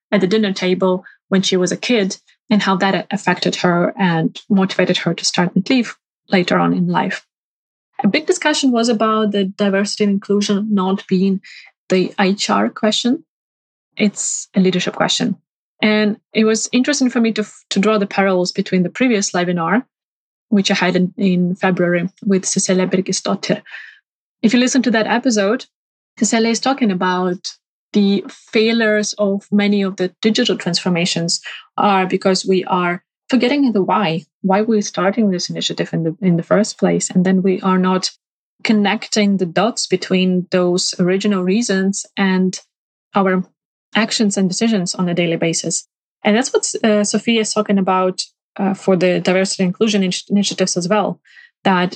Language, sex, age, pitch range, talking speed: English, female, 20-39, 185-215 Hz, 165 wpm